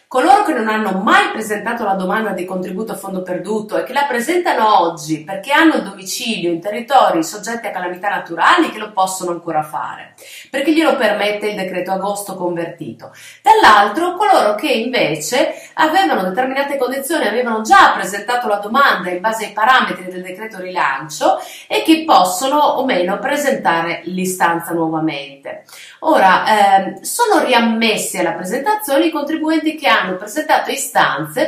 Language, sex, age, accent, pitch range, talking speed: Italian, female, 30-49, native, 185-275 Hz, 150 wpm